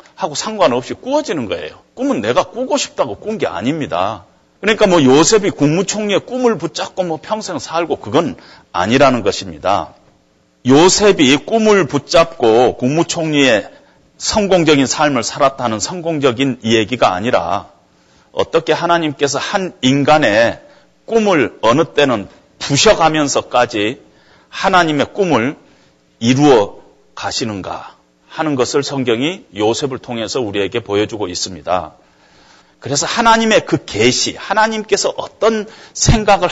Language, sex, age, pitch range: Korean, male, 40-59, 125-215 Hz